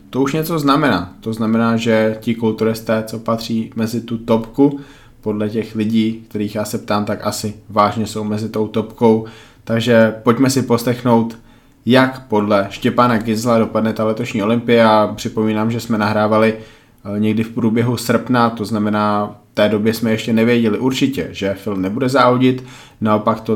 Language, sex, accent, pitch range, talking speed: Czech, male, native, 105-120 Hz, 160 wpm